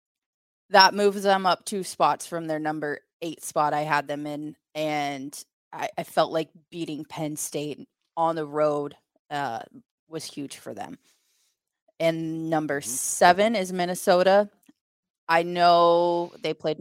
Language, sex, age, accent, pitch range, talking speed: English, female, 20-39, American, 155-205 Hz, 145 wpm